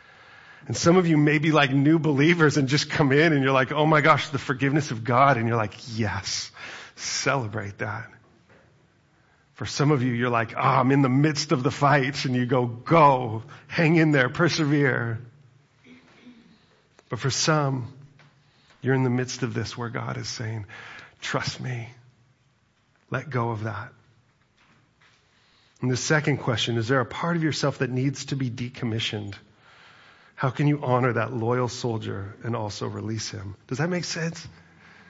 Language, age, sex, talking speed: English, 40-59, male, 170 wpm